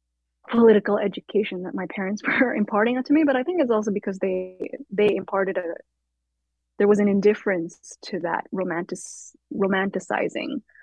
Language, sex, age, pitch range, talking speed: English, female, 20-39, 175-215 Hz, 155 wpm